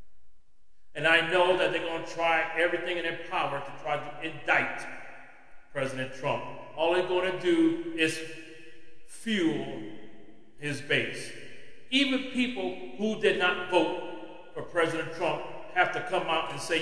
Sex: male